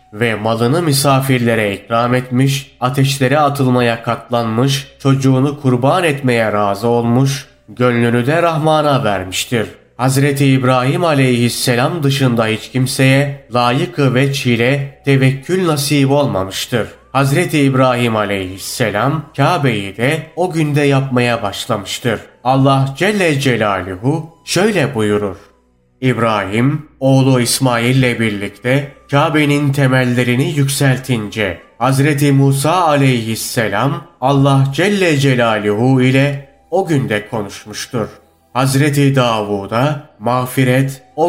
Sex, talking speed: male, 95 wpm